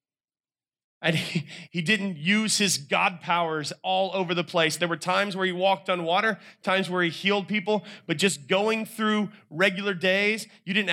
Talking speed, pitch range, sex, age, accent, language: 180 wpm, 170-210 Hz, male, 30-49, American, English